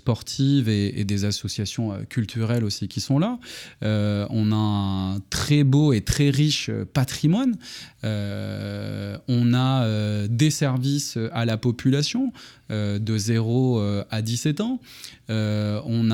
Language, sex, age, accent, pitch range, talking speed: French, male, 20-39, French, 110-140 Hz, 130 wpm